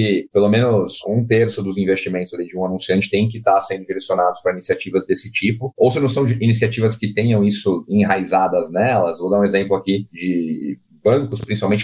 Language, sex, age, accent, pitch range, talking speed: Portuguese, male, 30-49, Brazilian, 100-120 Hz, 190 wpm